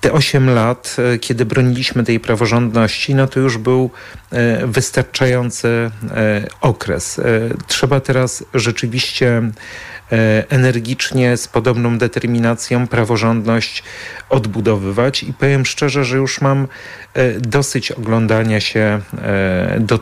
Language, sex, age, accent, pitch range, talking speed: Polish, male, 40-59, native, 110-130 Hz, 95 wpm